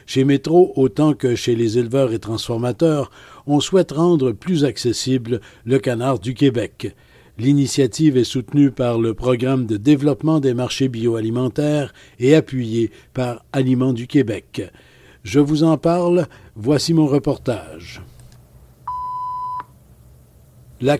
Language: French